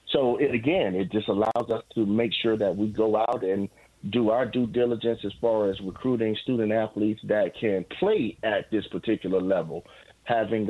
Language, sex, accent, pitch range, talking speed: English, male, American, 105-120 Hz, 180 wpm